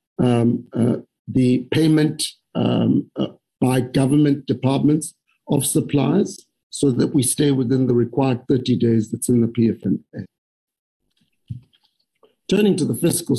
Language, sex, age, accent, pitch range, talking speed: English, male, 60-79, South African, 120-150 Hz, 125 wpm